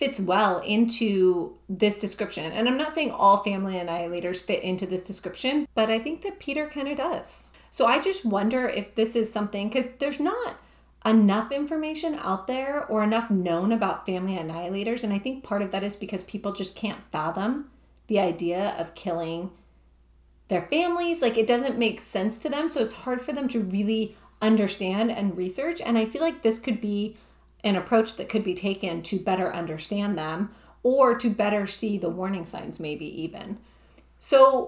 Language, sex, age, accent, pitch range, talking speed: English, female, 30-49, American, 195-260 Hz, 185 wpm